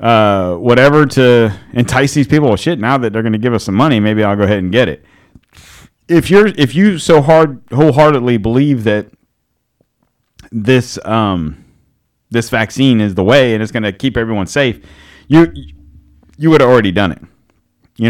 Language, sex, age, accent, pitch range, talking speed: English, male, 30-49, American, 90-125 Hz, 175 wpm